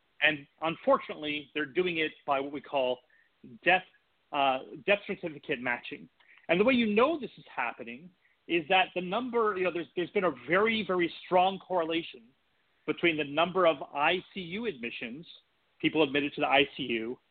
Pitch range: 150-200 Hz